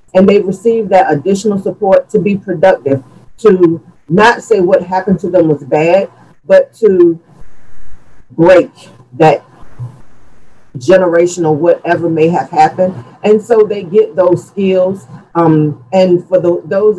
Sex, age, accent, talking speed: female, 40-59, American, 135 wpm